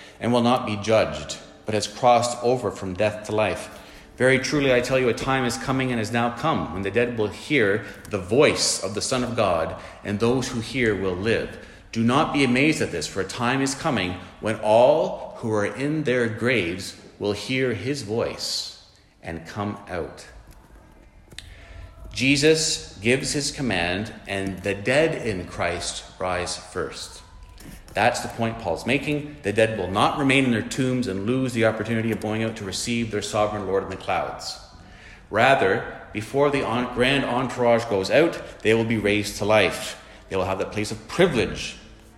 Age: 40-59